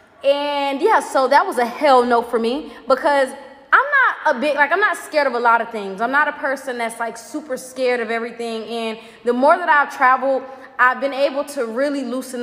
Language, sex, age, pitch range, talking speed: Amharic, female, 20-39, 235-305 Hz, 220 wpm